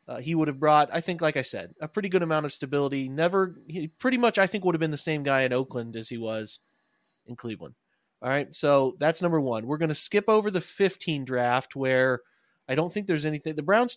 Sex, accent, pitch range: male, American, 135-175 Hz